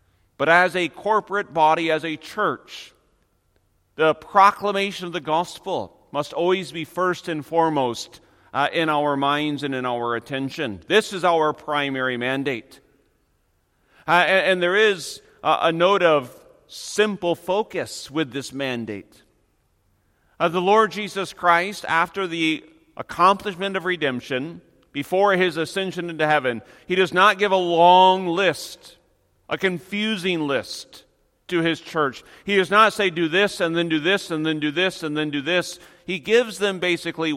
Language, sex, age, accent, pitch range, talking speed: English, male, 40-59, American, 145-185 Hz, 145 wpm